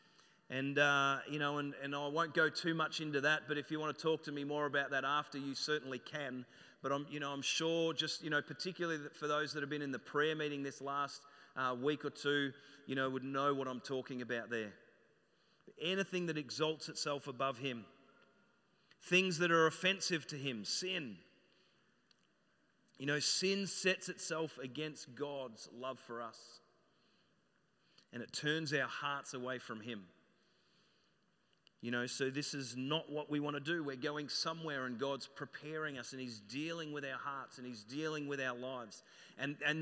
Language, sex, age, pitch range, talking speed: English, male, 30-49, 130-155 Hz, 190 wpm